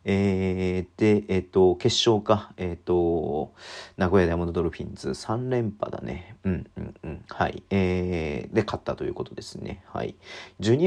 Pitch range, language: 85-105 Hz, Japanese